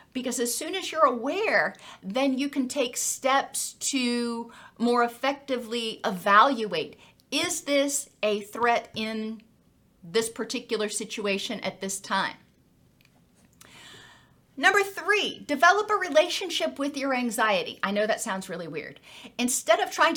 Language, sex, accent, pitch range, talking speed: English, female, American, 225-290 Hz, 130 wpm